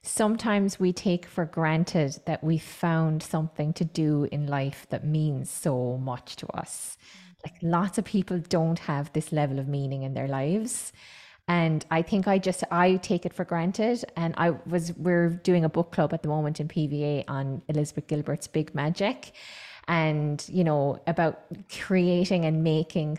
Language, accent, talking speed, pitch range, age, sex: English, Irish, 175 wpm, 150-190 Hz, 20-39, female